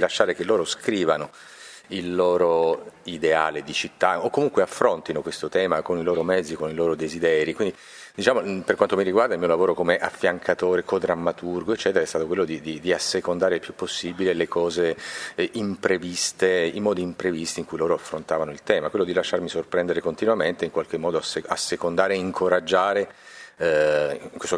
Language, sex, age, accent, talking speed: Italian, male, 40-59, native, 175 wpm